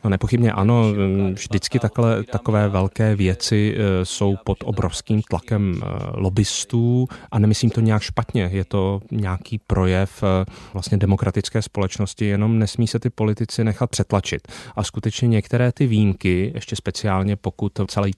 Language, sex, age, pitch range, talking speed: Czech, male, 30-49, 95-110 Hz, 130 wpm